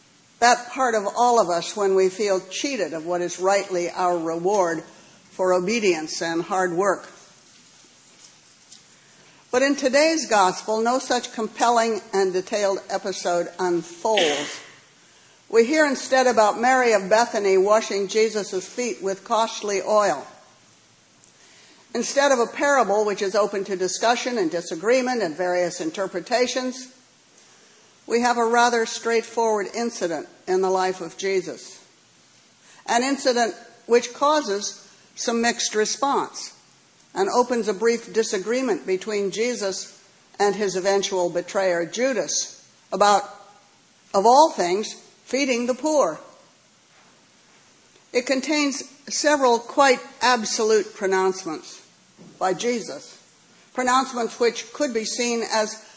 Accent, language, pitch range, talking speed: American, English, 190-245 Hz, 120 wpm